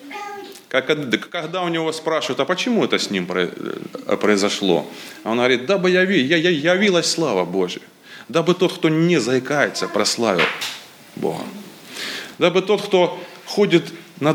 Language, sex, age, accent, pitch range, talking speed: Russian, male, 30-49, native, 120-185 Hz, 125 wpm